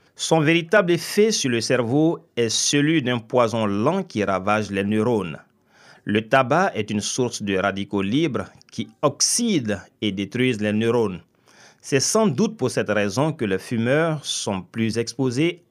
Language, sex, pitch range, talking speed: French, male, 105-150 Hz, 155 wpm